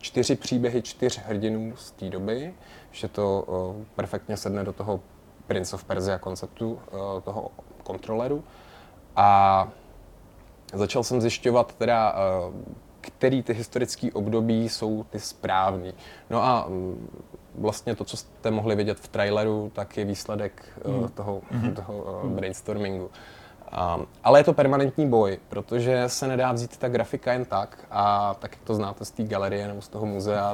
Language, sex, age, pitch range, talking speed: Czech, male, 20-39, 100-115 Hz, 155 wpm